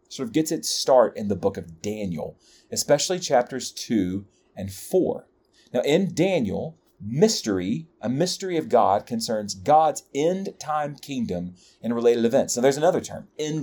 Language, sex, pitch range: English, male, 110-160 Hz